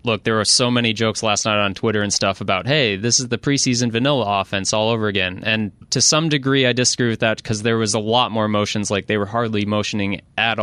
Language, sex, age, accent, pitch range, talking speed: English, male, 20-39, American, 105-125 Hz, 250 wpm